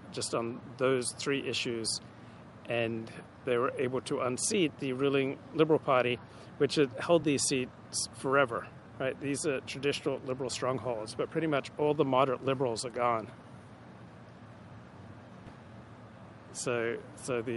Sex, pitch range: male, 115-135 Hz